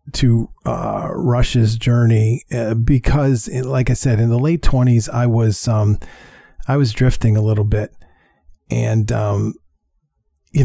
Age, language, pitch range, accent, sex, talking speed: 40-59, English, 110-130 Hz, American, male, 145 wpm